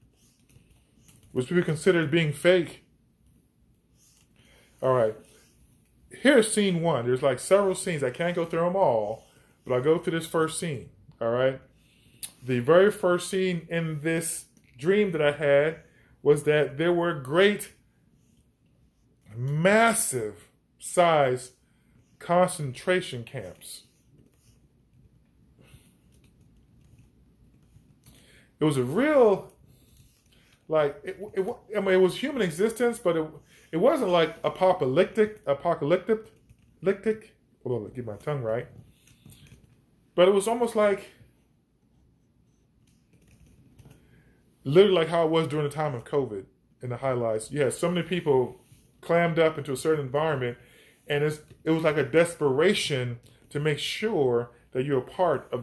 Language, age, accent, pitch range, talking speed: English, 20-39, American, 130-180 Hz, 130 wpm